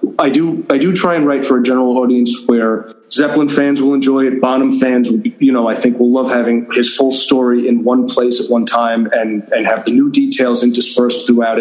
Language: English